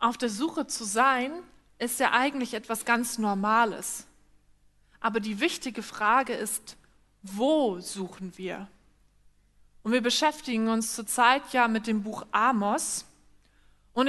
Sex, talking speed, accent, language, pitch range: female, 130 wpm, German, German, 225-295 Hz